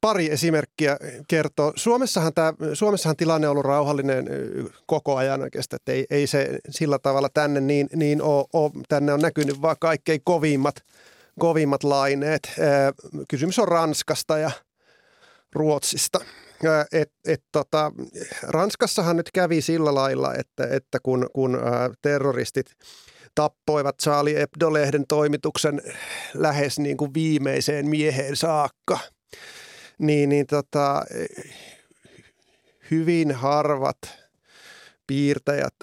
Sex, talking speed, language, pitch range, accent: male, 115 wpm, Finnish, 140-155 Hz, native